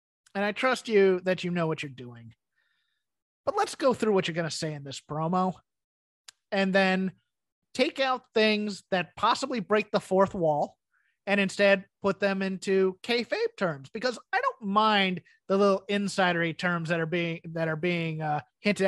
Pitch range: 175-225 Hz